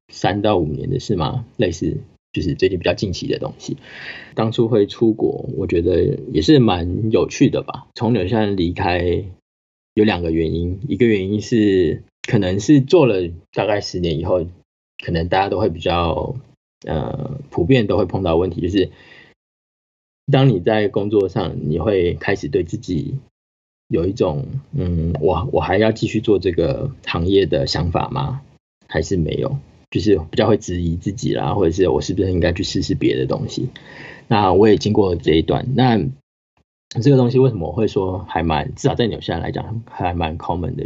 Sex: male